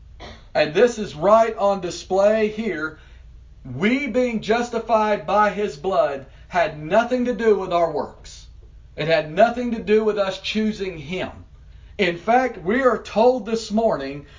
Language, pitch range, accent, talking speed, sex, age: English, 140-220 Hz, American, 150 wpm, male, 50-69